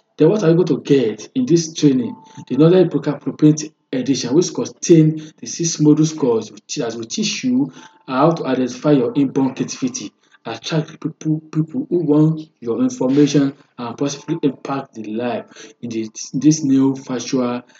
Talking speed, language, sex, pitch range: 165 wpm, English, male, 130-160 Hz